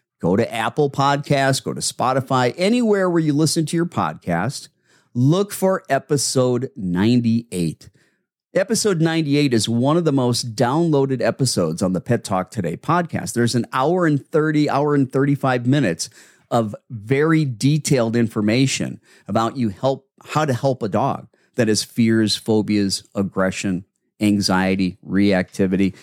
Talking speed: 150 wpm